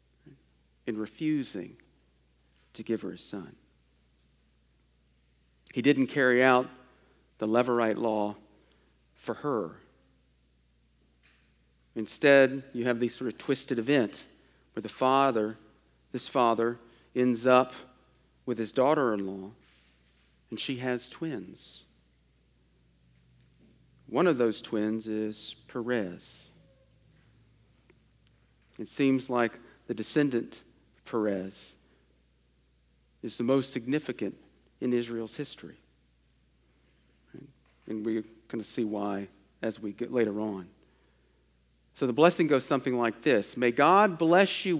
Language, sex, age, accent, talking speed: English, male, 40-59, American, 110 wpm